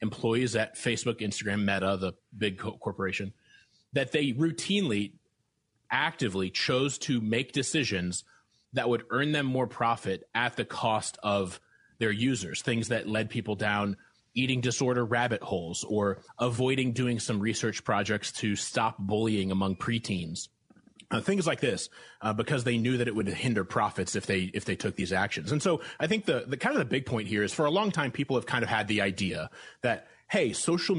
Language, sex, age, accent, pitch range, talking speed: English, male, 30-49, American, 100-135 Hz, 185 wpm